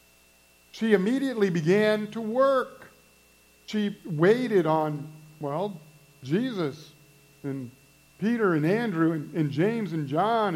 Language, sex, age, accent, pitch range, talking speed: English, male, 50-69, American, 150-205 Hz, 110 wpm